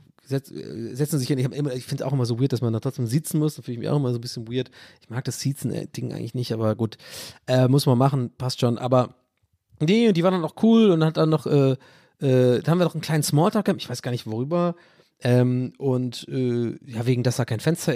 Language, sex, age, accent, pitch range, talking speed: German, male, 30-49, German, 130-175 Hz, 265 wpm